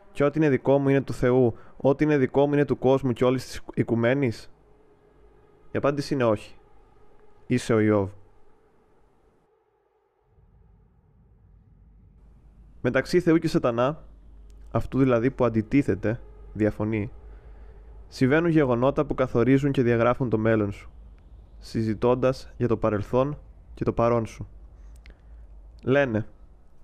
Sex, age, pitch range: male, 20-39, 105-135 Hz